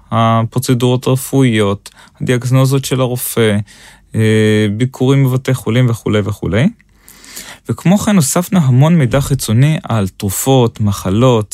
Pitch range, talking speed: 110-145 Hz, 100 wpm